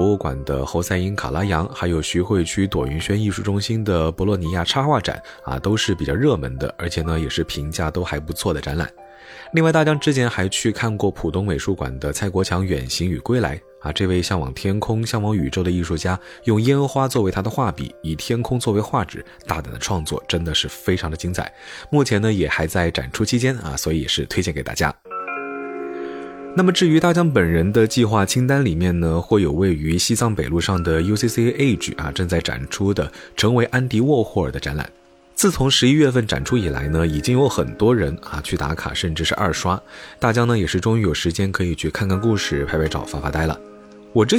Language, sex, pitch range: Chinese, male, 80-115 Hz